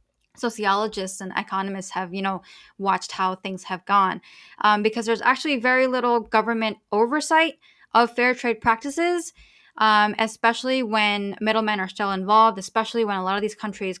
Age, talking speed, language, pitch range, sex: 10-29, 160 wpm, English, 195-230 Hz, female